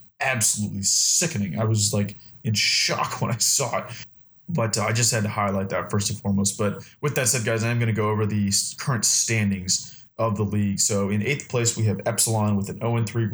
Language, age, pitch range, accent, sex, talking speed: English, 20-39, 105-120 Hz, American, male, 215 wpm